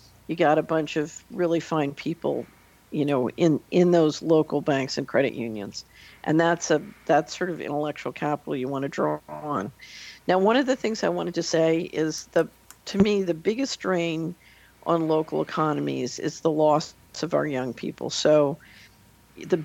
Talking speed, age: 180 wpm, 50-69